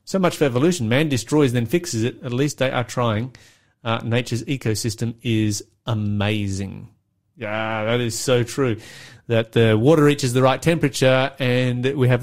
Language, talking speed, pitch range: English, 165 wpm, 110-145 Hz